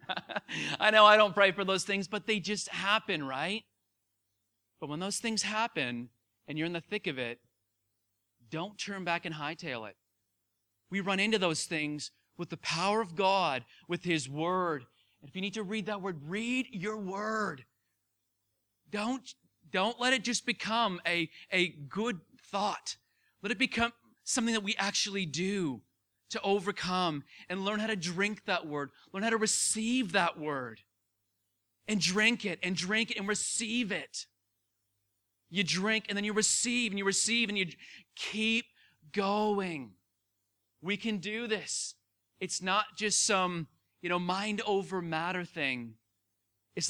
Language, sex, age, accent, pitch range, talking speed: English, male, 30-49, American, 140-210 Hz, 160 wpm